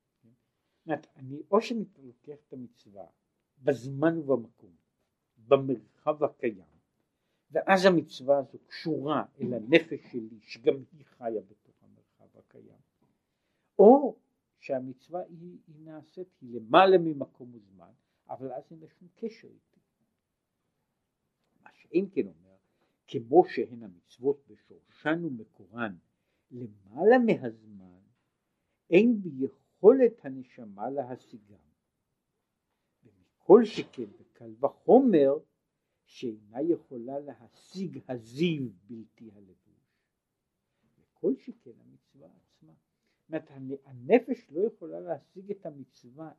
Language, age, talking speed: Hebrew, 60-79, 95 wpm